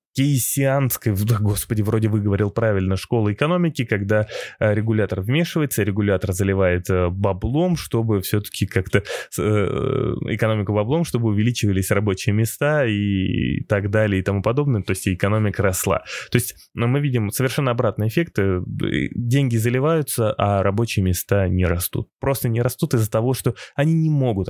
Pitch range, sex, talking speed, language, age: 100-125 Hz, male, 135 wpm, Russian, 20-39